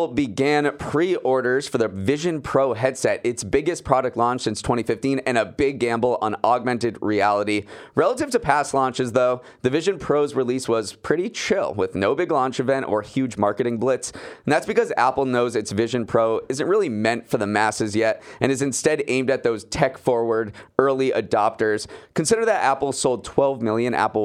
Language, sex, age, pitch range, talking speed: English, male, 30-49, 110-135 Hz, 180 wpm